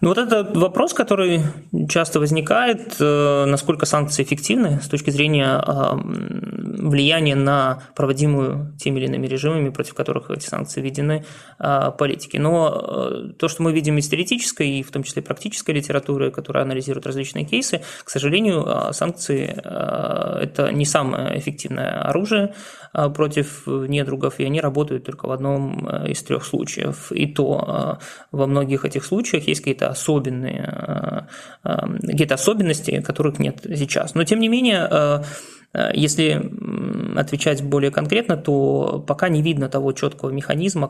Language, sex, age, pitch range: Russian, male, 20-39, 140-175 Hz